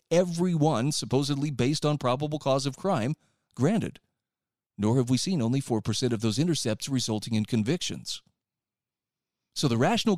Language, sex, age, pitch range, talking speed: English, male, 40-59, 120-160 Hz, 145 wpm